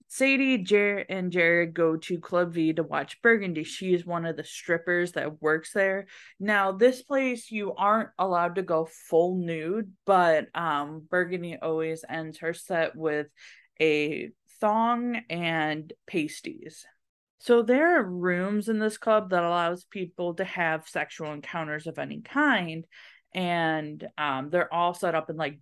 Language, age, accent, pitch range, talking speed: English, 20-39, American, 160-215 Hz, 155 wpm